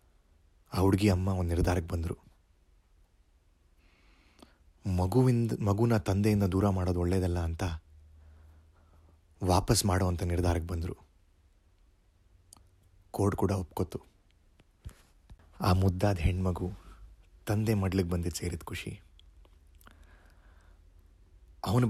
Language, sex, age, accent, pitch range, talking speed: Kannada, male, 30-49, native, 85-100 Hz, 80 wpm